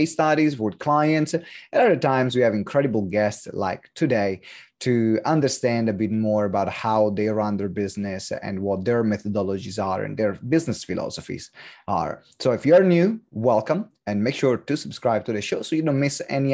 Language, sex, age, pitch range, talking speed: English, male, 30-49, 105-145 Hz, 185 wpm